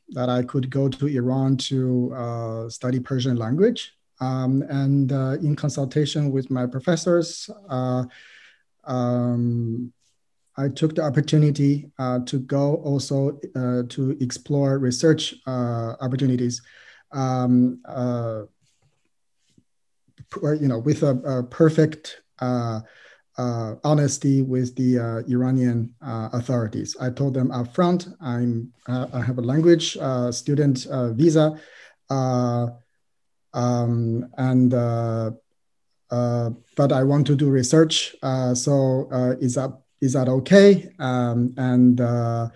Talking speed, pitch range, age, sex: 125 wpm, 120-140 Hz, 30-49, male